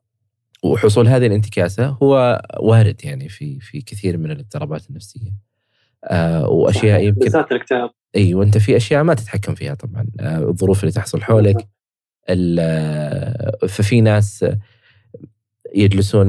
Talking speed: 120 wpm